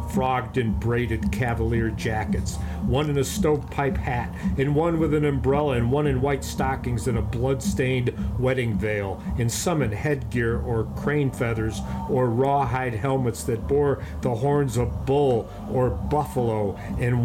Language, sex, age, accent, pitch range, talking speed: English, male, 50-69, American, 110-140 Hz, 155 wpm